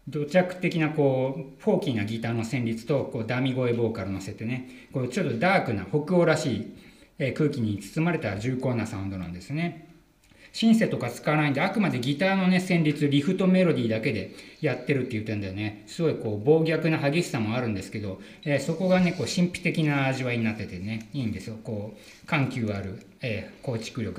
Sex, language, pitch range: male, Japanese, 110-155 Hz